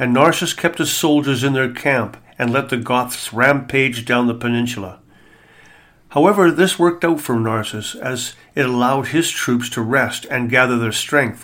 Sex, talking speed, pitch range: male, 175 wpm, 115-140 Hz